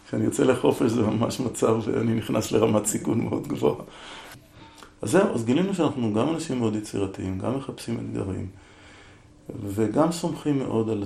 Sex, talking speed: male, 150 wpm